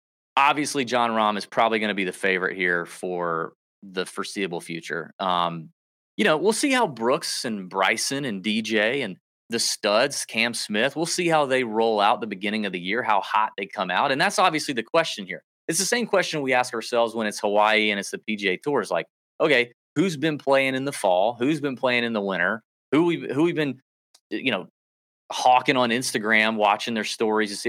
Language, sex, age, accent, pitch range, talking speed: English, male, 30-49, American, 100-135 Hz, 210 wpm